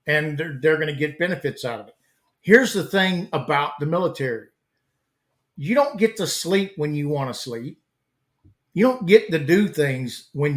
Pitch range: 135-175 Hz